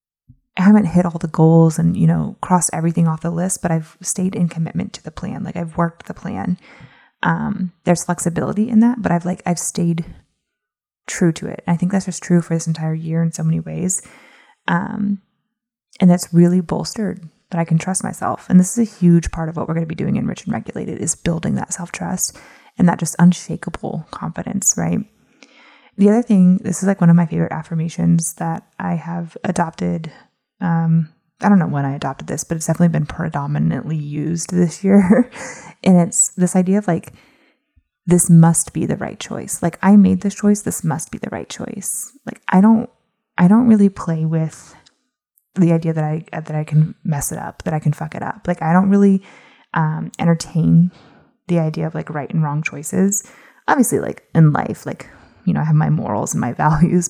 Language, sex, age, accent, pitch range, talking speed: English, female, 20-39, American, 165-195 Hz, 205 wpm